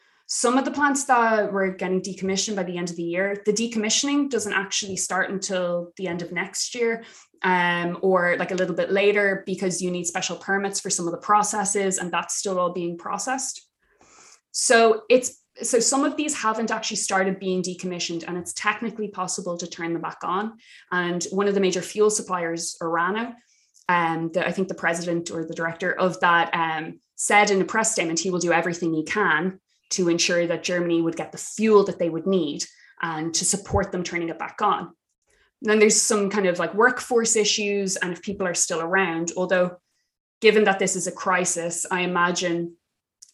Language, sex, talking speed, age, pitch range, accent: English, female, 195 wpm, 20-39, 170-205 Hz, Irish